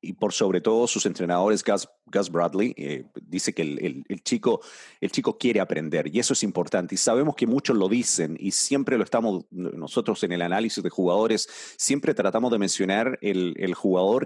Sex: male